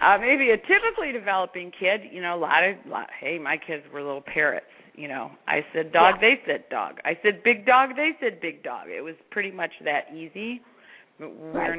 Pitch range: 155-190 Hz